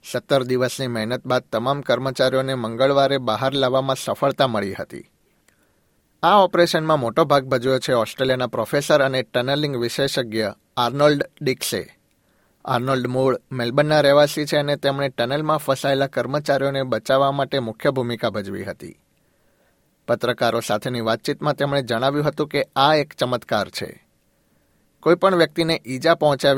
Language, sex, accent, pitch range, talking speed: Gujarati, male, native, 125-145 Hz, 125 wpm